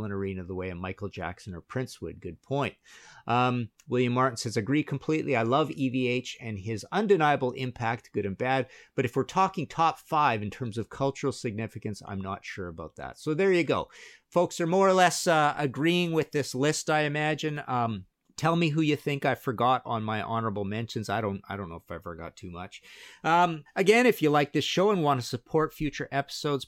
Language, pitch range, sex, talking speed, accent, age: English, 105-150 Hz, male, 210 wpm, American, 50-69